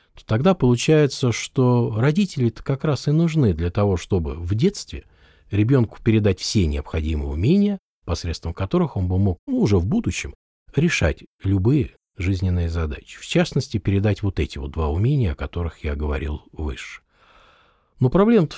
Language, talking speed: Russian, 150 wpm